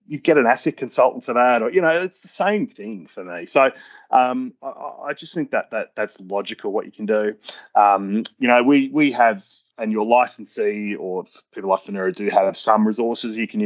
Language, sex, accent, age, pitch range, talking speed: English, male, Australian, 30-49, 105-145 Hz, 215 wpm